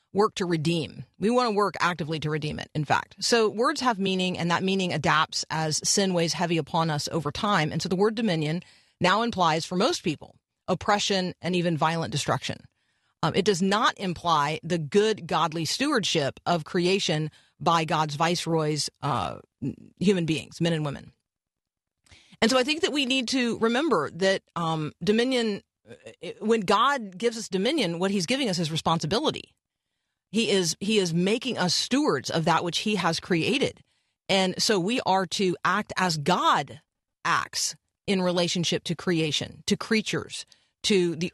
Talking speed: 170 wpm